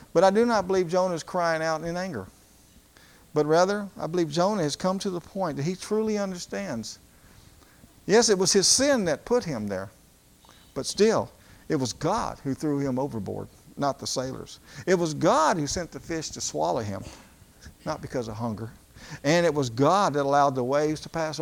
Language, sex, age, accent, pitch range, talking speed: English, male, 50-69, American, 130-185 Hz, 195 wpm